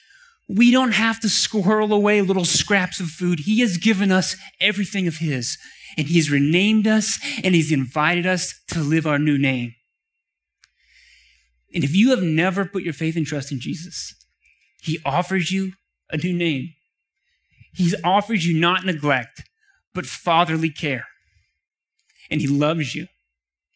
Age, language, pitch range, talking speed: 30-49, English, 140-190 Hz, 150 wpm